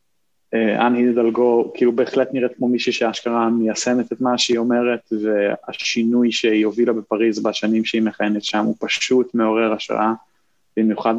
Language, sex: Hebrew, male